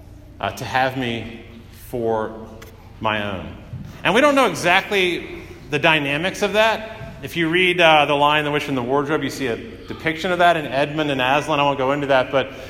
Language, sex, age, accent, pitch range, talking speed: English, male, 40-59, American, 110-170 Hz, 205 wpm